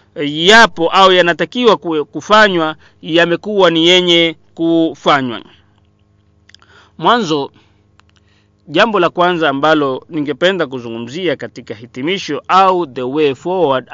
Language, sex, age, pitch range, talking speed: Swahili, male, 40-59, 115-190 Hz, 90 wpm